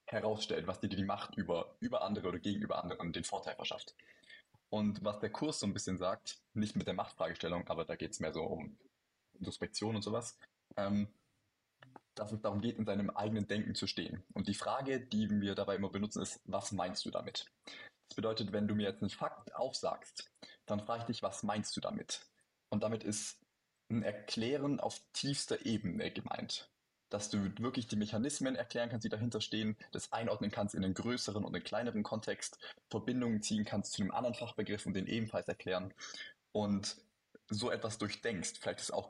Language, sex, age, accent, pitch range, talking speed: German, male, 20-39, German, 100-115 Hz, 190 wpm